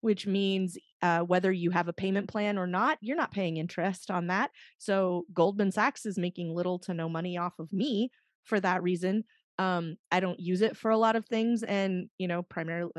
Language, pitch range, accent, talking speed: English, 180-210 Hz, American, 215 wpm